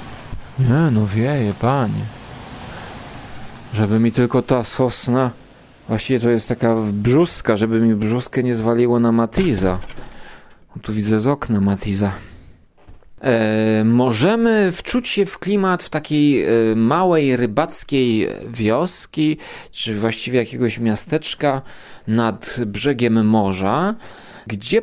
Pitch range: 110-140 Hz